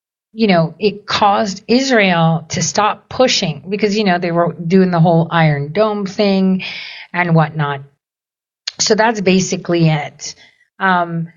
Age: 40-59